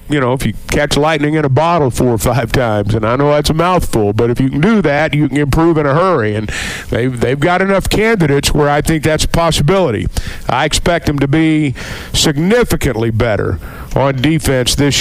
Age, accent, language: 50-69, American, English